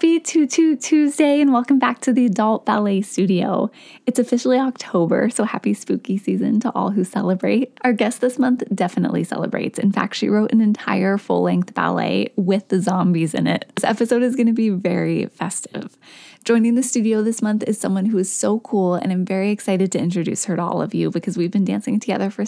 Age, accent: 20-39, American